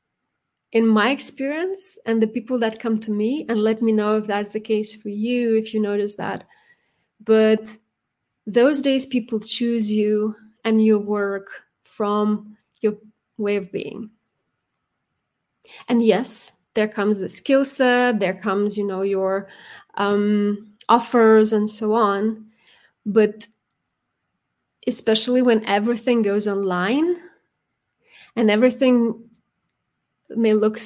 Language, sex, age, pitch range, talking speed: English, female, 20-39, 210-240 Hz, 125 wpm